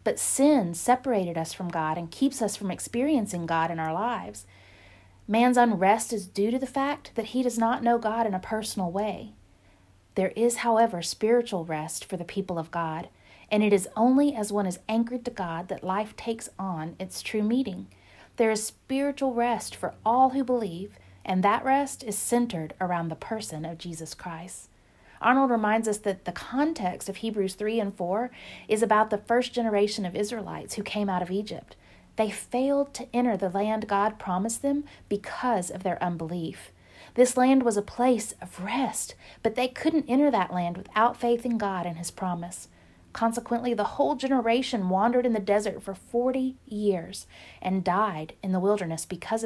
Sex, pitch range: female, 180-240 Hz